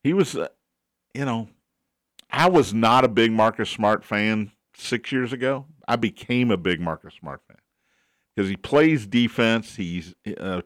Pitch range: 105-135 Hz